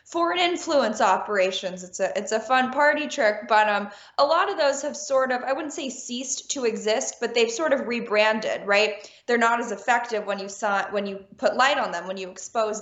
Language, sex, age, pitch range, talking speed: English, female, 10-29, 205-265 Hz, 220 wpm